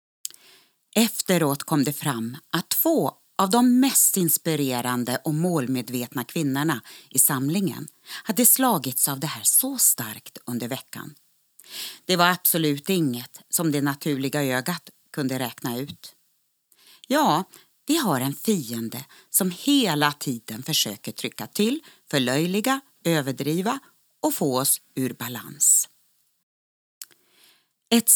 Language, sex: Swedish, female